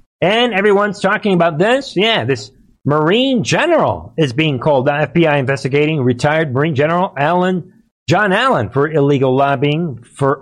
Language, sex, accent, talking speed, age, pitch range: English, male, American, 145 wpm, 50-69, 135-175 Hz